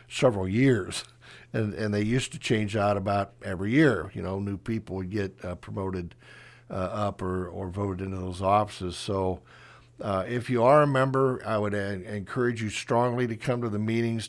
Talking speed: 190 wpm